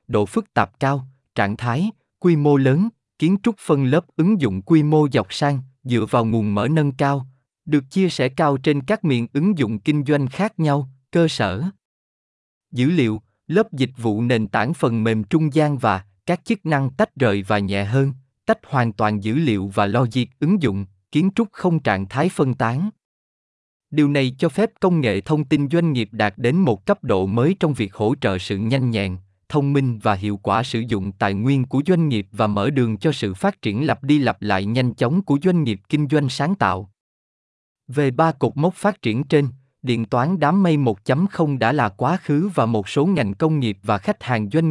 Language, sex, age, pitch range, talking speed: Vietnamese, male, 20-39, 110-160 Hz, 210 wpm